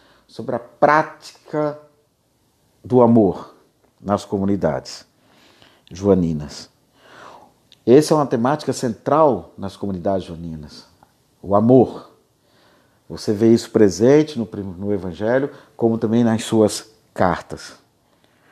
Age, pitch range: 50-69, 110-150 Hz